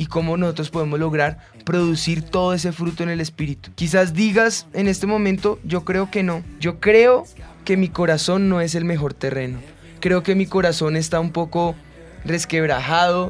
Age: 20-39